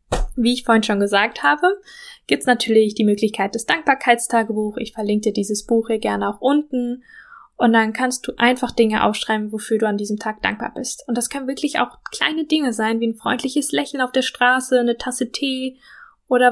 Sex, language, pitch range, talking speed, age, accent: female, German, 215-245 Hz, 200 wpm, 10-29, German